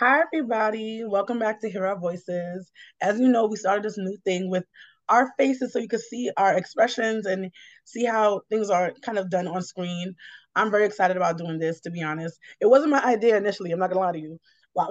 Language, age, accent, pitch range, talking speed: English, 20-39, American, 180-220 Hz, 225 wpm